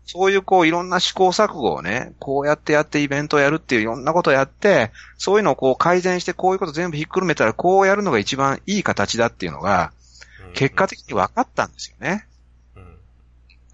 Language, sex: Japanese, male